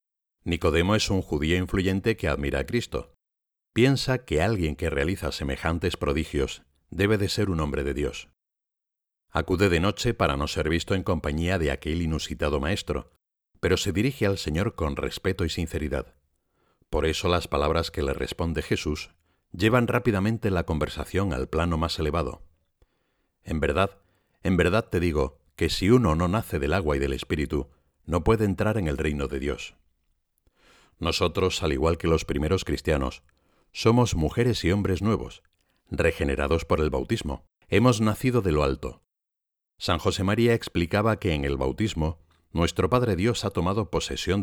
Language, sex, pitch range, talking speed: Spanish, male, 75-100 Hz, 160 wpm